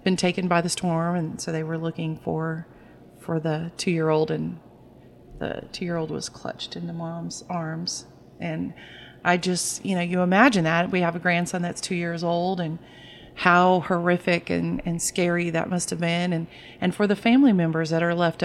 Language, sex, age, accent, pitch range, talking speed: English, female, 30-49, American, 165-185 Hz, 190 wpm